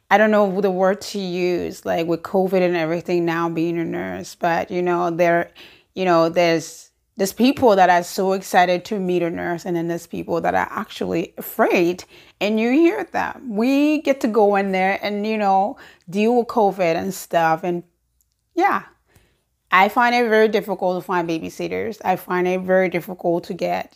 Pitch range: 185-235 Hz